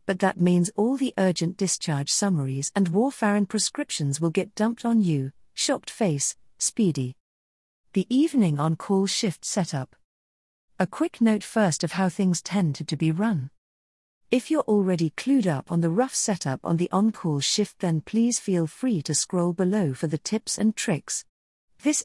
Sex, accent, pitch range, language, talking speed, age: female, British, 155-215 Hz, English, 165 wpm, 50-69